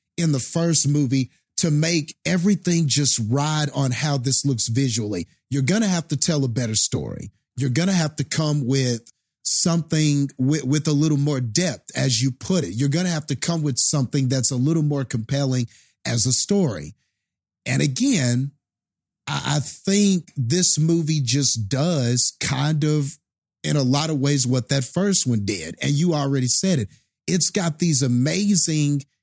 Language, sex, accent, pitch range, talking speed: English, male, American, 130-165 Hz, 175 wpm